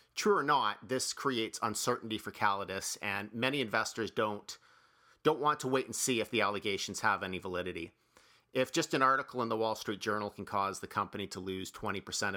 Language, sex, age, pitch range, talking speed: English, male, 40-59, 95-120 Hz, 195 wpm